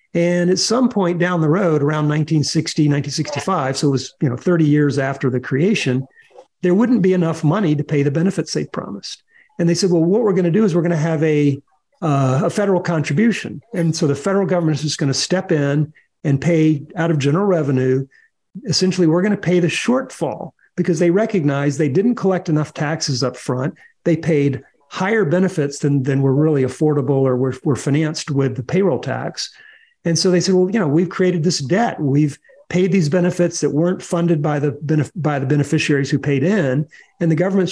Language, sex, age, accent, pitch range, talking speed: English, male, 50-69, American, 145-185 Hz, 205 wpm